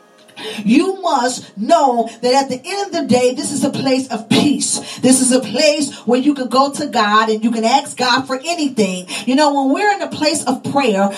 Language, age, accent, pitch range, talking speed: English, 40-59, American, 235-290 Hz, 225 wpm